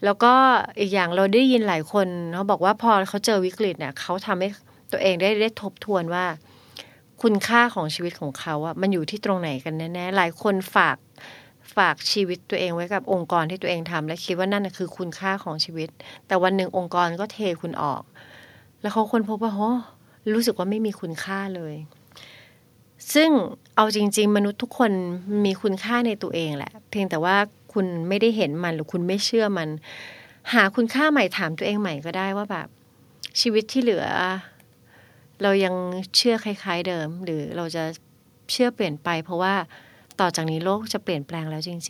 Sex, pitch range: female, 165-210 Hz